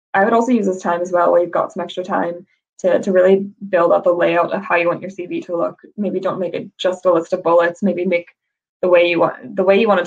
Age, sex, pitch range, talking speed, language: 20-39, female, 170-190 Hz, 290 wpm, English